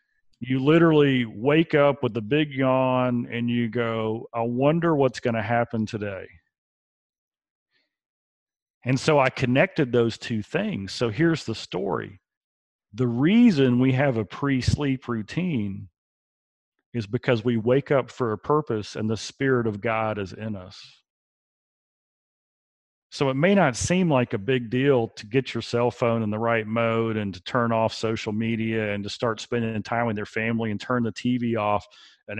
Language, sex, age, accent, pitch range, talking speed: English, male, 40-59, American, 110-140 Hz, 165 wpm